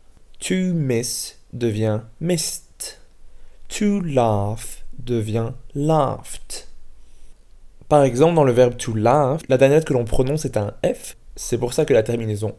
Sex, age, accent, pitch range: male, 20-39, French, 110-140 Hz